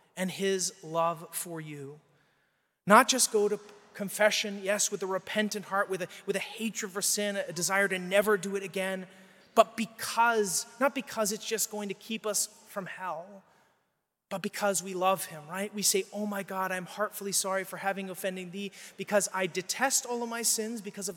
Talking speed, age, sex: 195 wpm, 30-49, male